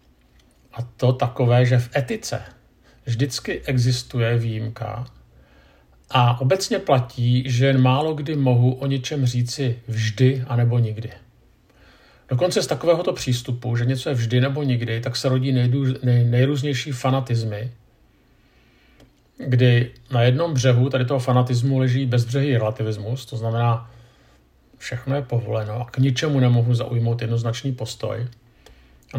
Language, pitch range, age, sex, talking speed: Czech, 120-135 Hz, 50-69, male, 125 wpm